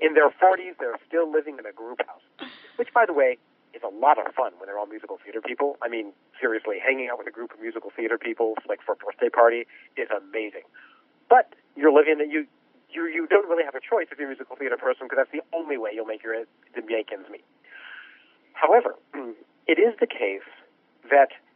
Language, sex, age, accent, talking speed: English, male, 50-69, American, 220 wpm